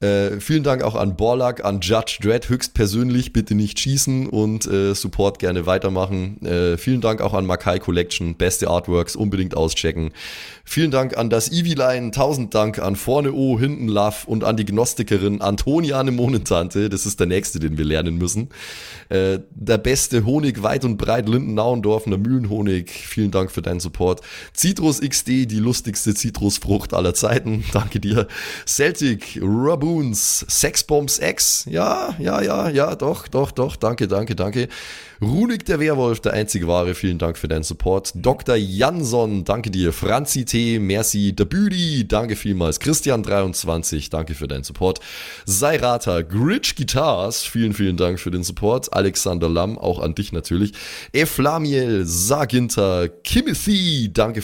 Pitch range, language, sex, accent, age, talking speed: 95-125 Hz, German, male, German, 20-39, 150 wpm